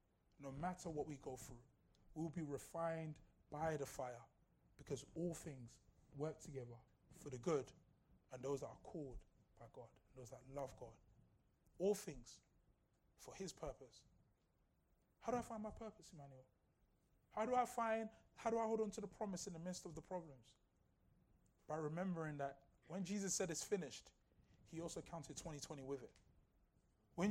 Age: 20-39